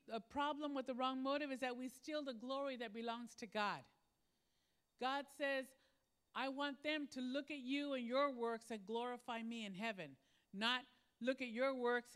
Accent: American